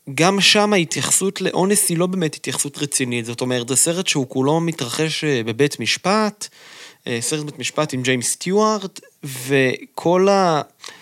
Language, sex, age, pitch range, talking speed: Hebrew, male, 20-39, 125-160 Hz, 135 wpm